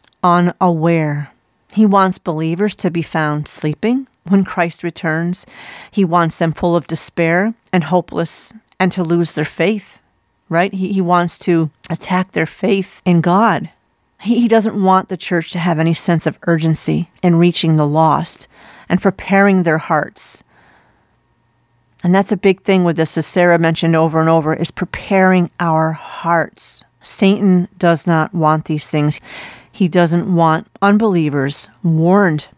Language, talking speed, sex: English, 145 wpm, female